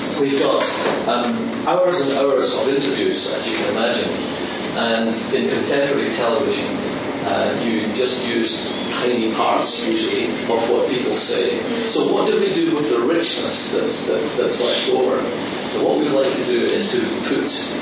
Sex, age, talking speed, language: male, 40-59, 165 wpm, English